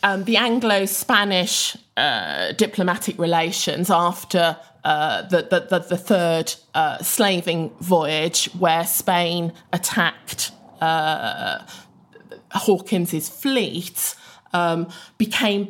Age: 20-39